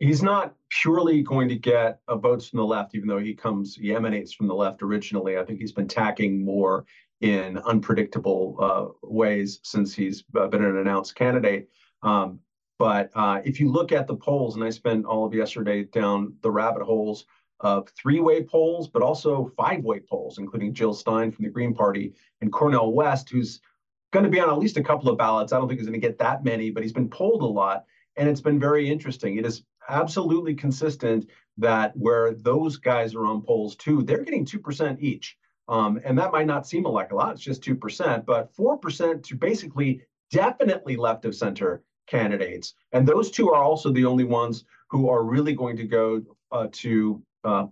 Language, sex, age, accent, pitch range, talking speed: English, male, 40-59, American, 110-135 Hz, 200 wpm